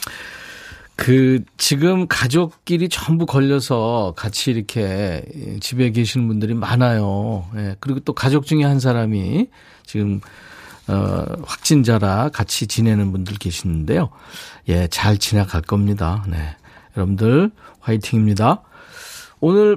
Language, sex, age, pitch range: Korean, male, 40-59, 100-155 Hz